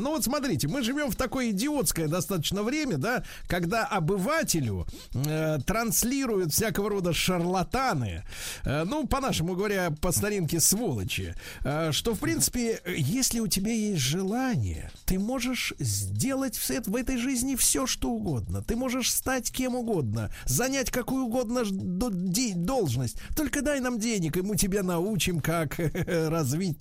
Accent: native